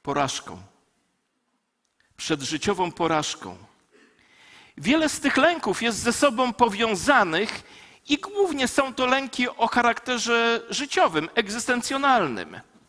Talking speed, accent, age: 95 wpm, native, 50-69